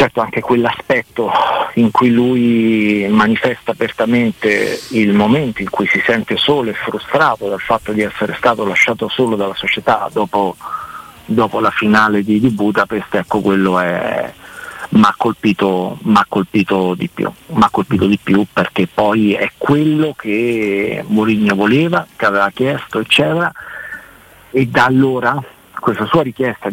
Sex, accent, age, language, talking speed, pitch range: male, native, 50-69, Italian, 130 wpm, 105-125 Hz